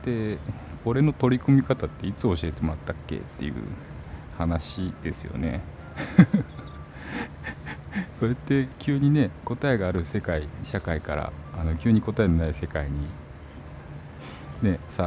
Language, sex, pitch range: Japanese, male, 75-105 Hz